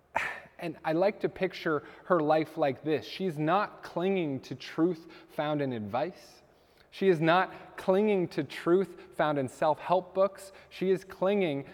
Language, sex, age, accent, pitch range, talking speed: English, male, 20-39, American, 110-185 Hz, 160 wpm